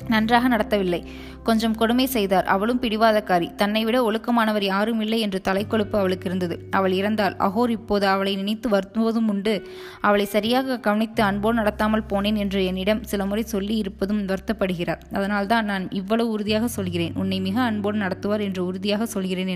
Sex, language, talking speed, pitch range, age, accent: female, Tamil, 155 wpm, 190-220 Hz, 20-39, native